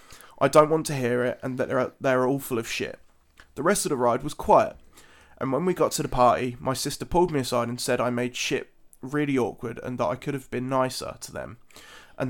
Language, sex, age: English, male, 20-39